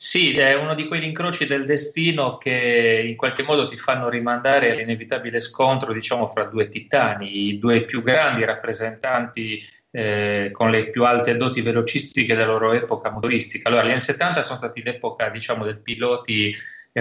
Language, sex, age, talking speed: Italian, male, 30-49, 170 wpm